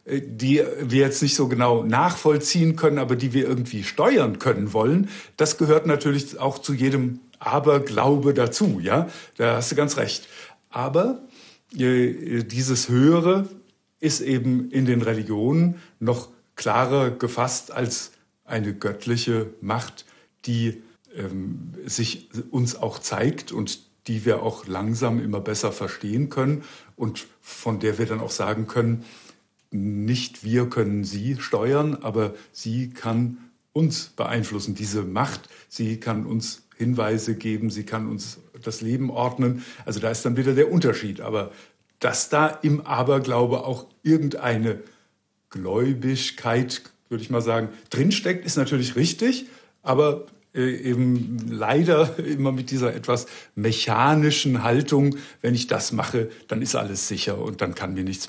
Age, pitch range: 60-79, 115-140 Hz